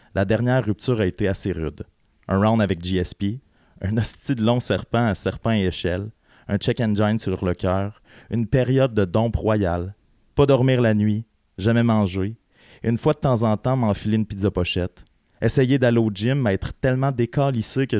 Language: French